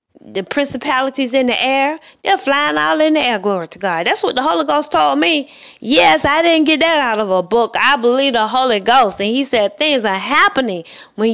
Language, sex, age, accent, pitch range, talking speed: English, female, 20-39, American, 210-275 Hz, 215 wpm